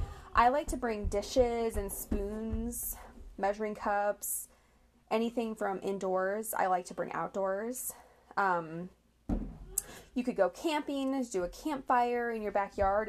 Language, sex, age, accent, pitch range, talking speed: English, female, 20-39, American, 195-245 Hz, 130 wpm